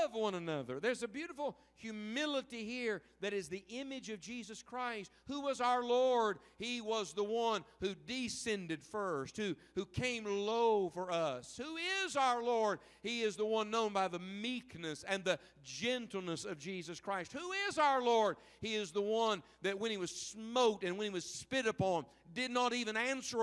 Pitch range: 185-245 Hz